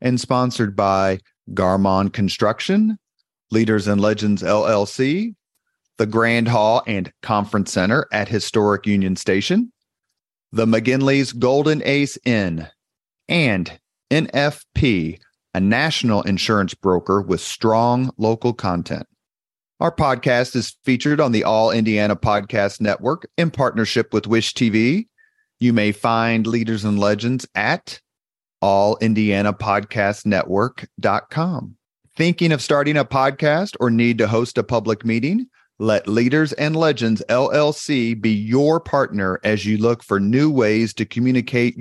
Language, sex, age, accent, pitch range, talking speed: English, male, 40-59, American, 105-130 Hz, 120 wpm